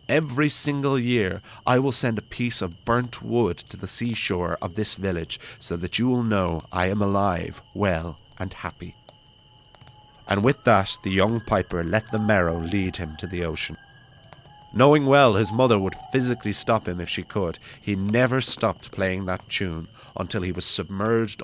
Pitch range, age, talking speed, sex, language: 90-125 Hz, 30-49, 175 wpm, male, English